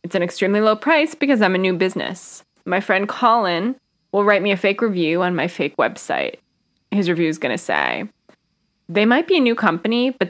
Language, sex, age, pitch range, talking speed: English, female, 20-39, 175-230 Hz, 210 wpm